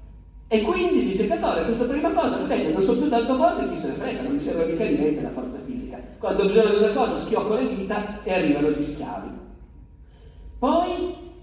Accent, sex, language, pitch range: native, male, Italian, 170-260 Hz